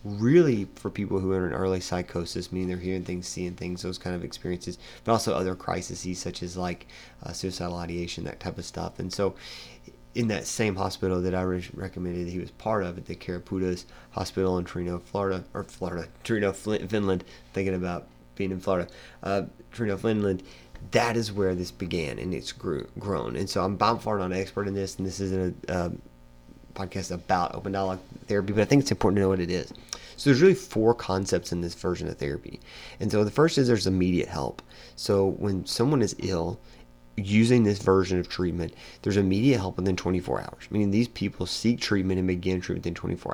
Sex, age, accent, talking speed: male, 30-49, American, 210 wpm